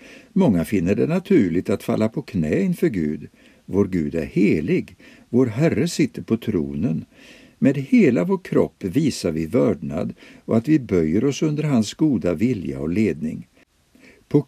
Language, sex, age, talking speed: Swedish, male, 60-79, 160 wpm